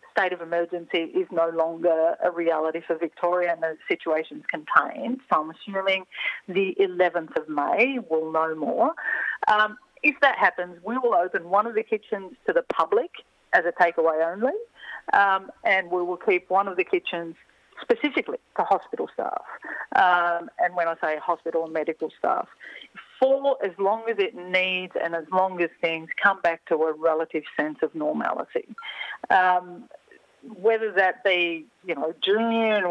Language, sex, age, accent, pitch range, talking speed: English, female, 40-59, Australian, 165-215 Hz, 170 wpm